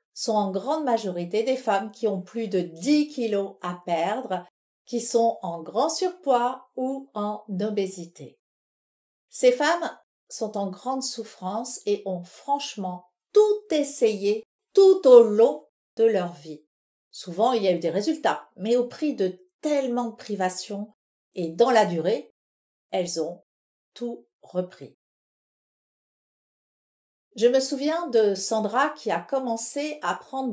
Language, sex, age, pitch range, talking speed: French, female, 50-69, 190-260 Hz, 140 wpm